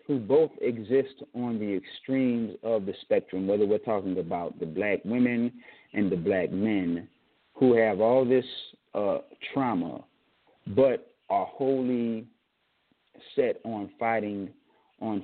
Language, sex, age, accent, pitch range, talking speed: English, male, 40-59, American, 110-130 Hz, 130 wpm